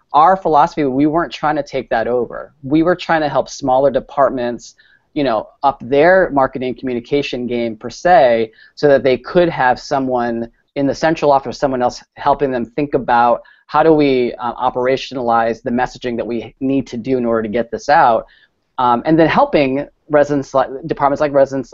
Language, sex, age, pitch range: English, male, 30-49, 120-150 Hz